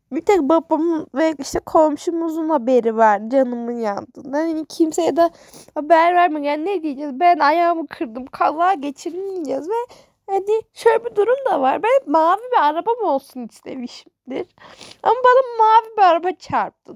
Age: 10-29